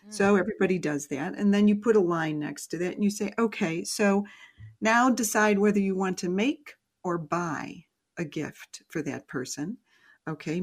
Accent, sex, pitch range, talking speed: American, female, 170-225 Hz, 185 wpm